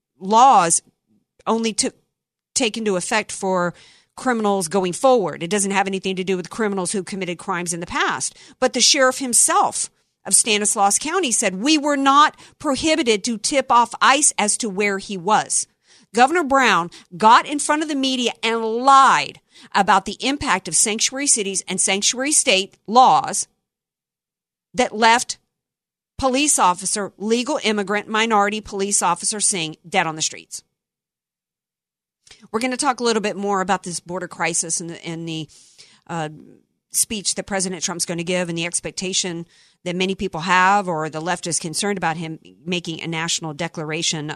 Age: 50-69